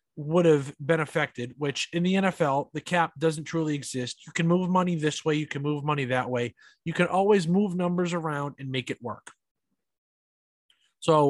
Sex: male